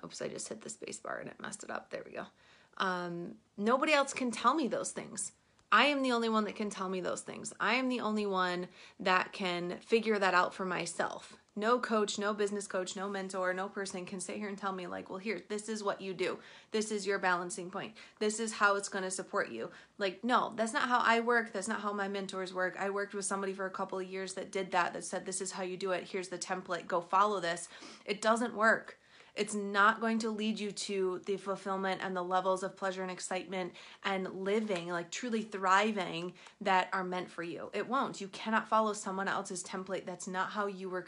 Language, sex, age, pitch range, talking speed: English, female, 30-49, 185-210 Hz, 235 wpm